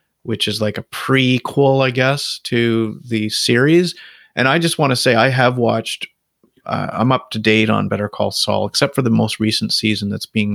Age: 30-49